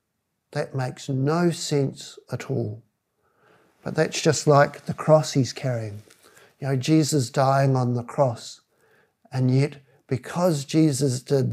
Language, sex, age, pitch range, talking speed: English, male, 50-69, 125-160 Hz, 135 wpm